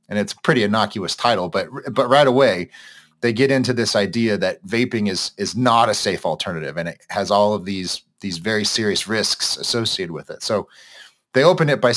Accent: American